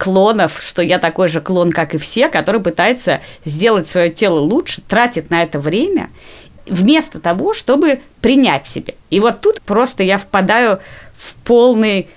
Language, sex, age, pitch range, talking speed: Russian, female, 30-49, 170-230 Hz, 155 wpm